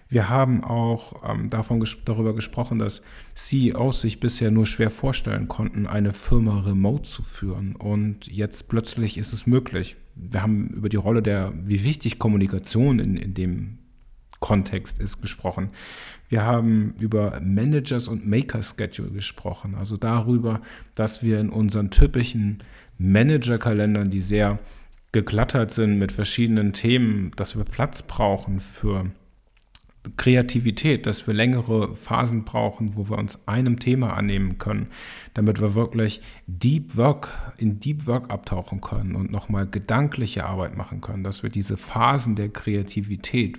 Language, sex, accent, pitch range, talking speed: German, male, German, 105-120 Hz, 145 wpm